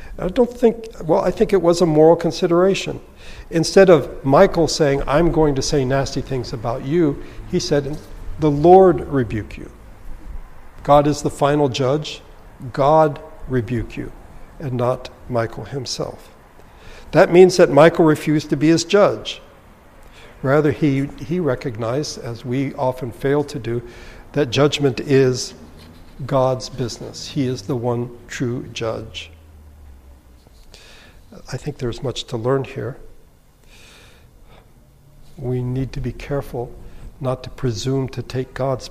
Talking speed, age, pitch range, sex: 135 wpm, 60-79, 115-150 Hz, male